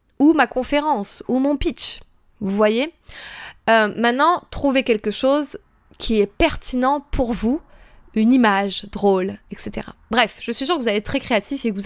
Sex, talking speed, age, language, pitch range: female, 175 wpm, 20-39, French, 205-275 Hz